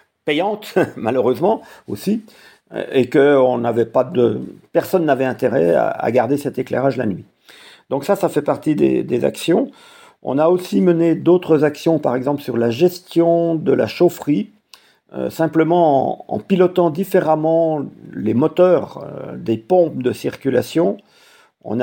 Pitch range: 130-170 Hz